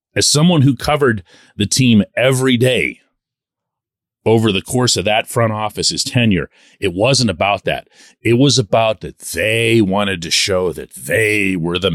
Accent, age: American, 40-59